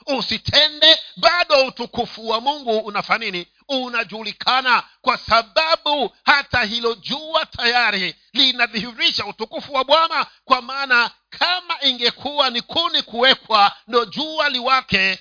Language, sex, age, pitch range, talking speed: Swahili, male, 50-69, 195-265 Hz, 105 wpm